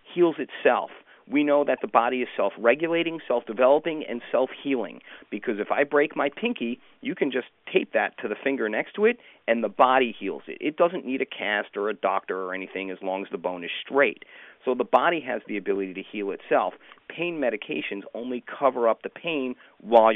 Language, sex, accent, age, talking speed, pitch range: English, male, American, 40-59, 200 wpm, 105-145 Hz